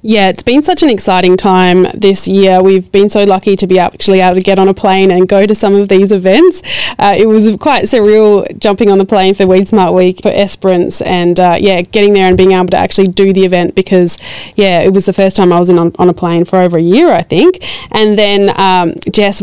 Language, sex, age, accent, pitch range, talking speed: English, female, 20-39, Australian, 180-205 Hz, 250 wpm